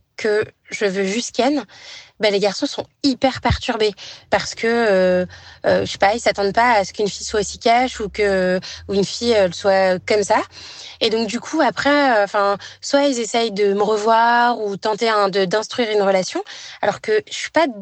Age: 20-39